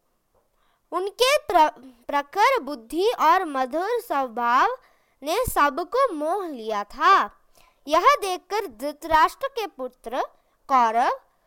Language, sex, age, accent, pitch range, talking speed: English, female, 20-39, Indian, 275-390 Hz, 95 wpm